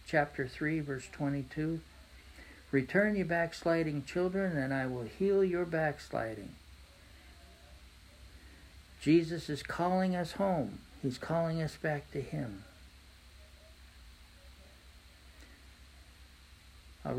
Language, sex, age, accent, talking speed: English, male, 60-79, American, 90 wpm